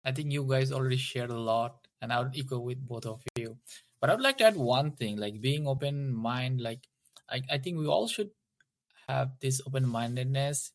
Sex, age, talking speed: male, 20-39, 220 wpm